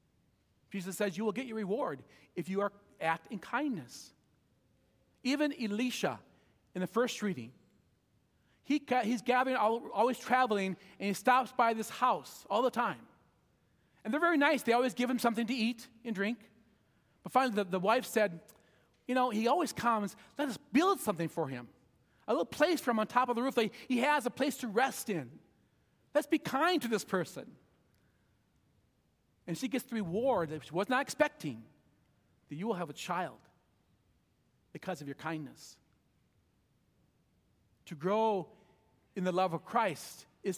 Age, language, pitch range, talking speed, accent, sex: 40-59, English, 175-240 Hz, 165 wpm, American, male